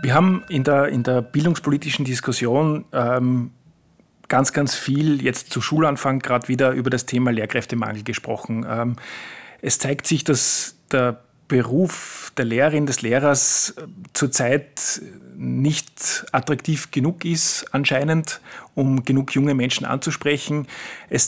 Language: German